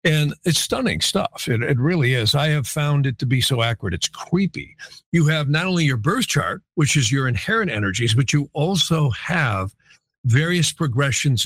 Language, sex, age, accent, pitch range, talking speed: English, male, 50-69, American, 130-170 Hz, 190 wpm